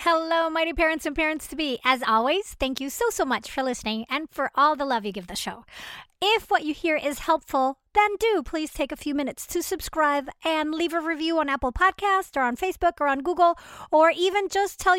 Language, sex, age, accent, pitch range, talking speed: English, female, 30-49, American, 265-335 Hz, 230 wpm